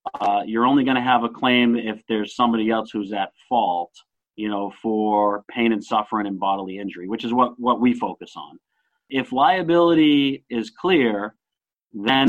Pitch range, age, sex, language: 115-140 Hz, 40-59, male, English